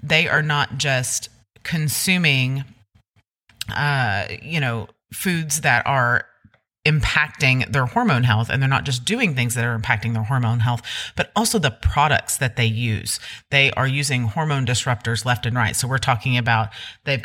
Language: English